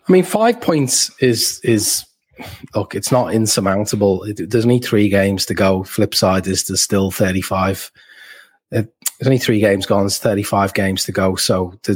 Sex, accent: male, British